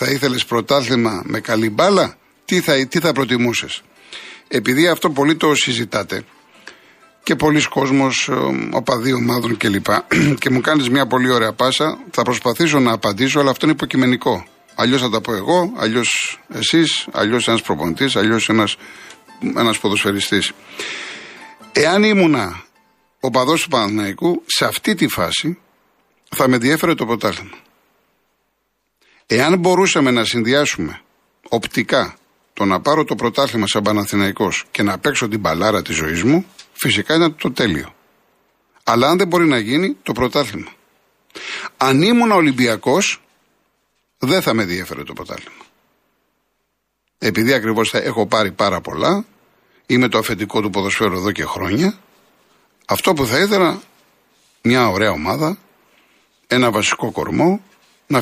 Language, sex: Greek, male